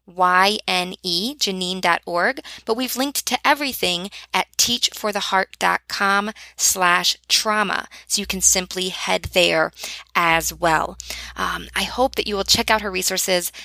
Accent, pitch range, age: American, 175-210 Hz, 20-39